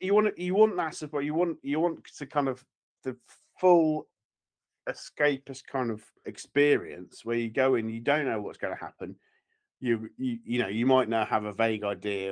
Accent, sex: British, male